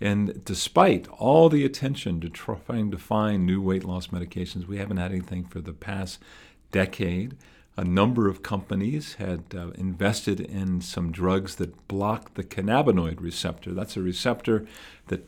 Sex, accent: male, American